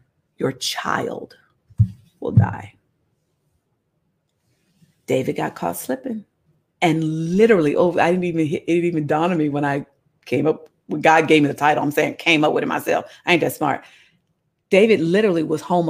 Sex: female